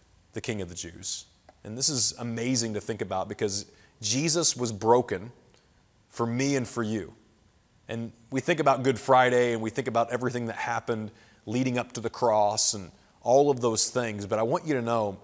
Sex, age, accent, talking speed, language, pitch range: male, 30-49, American, 195 wpm, English, 110-140 Hz